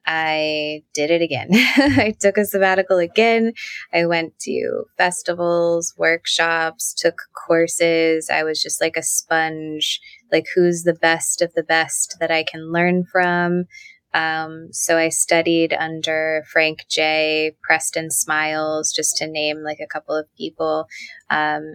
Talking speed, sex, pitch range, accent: 145 wpm, female, 155-175 Hz, American